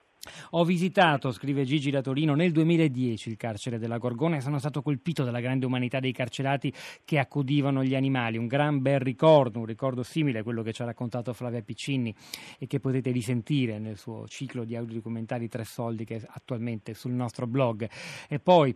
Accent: native